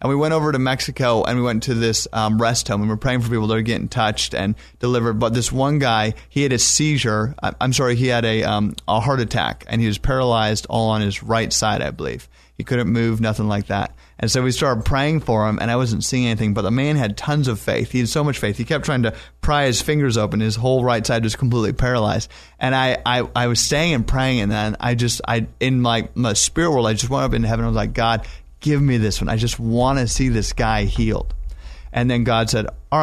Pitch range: 105-125 Hz